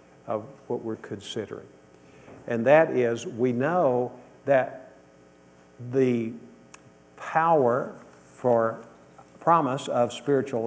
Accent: American